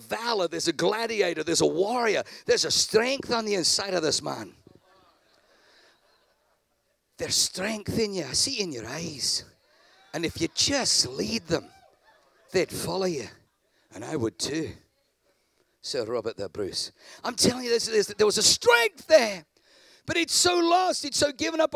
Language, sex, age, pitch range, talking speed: English, male, 50-69, 190-295 Hz, 165 wpm